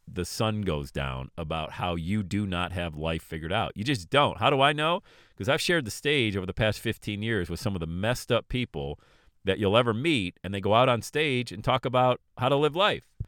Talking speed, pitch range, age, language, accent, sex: 245 wpm, 95-125 Hz, 40-59, English, American, male